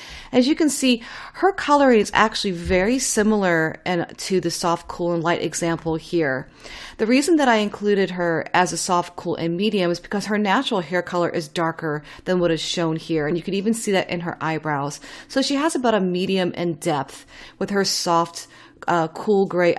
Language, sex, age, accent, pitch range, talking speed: English, female, 40-59, American, 170-205 Hz, 205 wpm